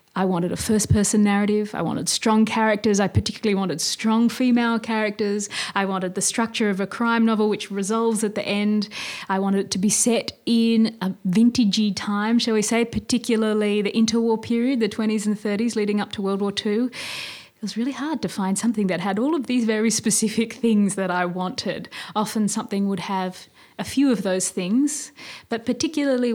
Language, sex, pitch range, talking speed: English, female, 185-220 Hz, 190 wpm